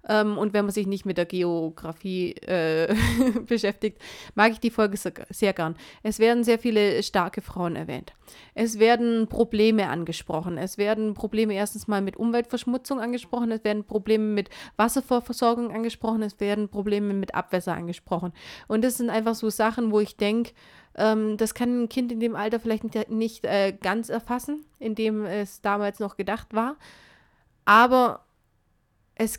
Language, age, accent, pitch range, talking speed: German, 30-49, German, 195-225 Hz, 160 wpm